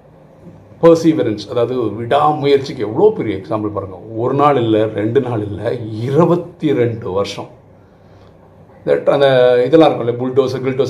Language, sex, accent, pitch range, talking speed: English, male, Indian, 105-140 Hz, 65 wpm